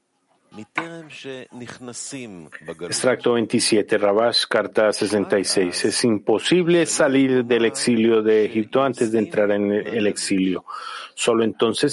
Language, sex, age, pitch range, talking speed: Spanish, male, 50-69, 115-145 Hz, 100 wpm